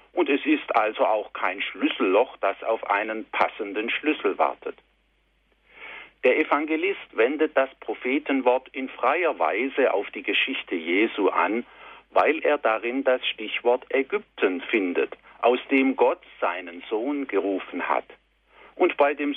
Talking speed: 135 wpm